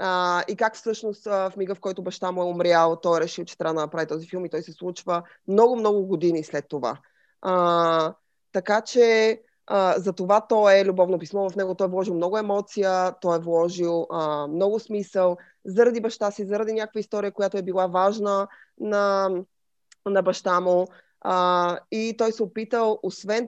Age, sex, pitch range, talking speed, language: 20-39, female, 170-215 Hz, 185 wpm, Bulgarian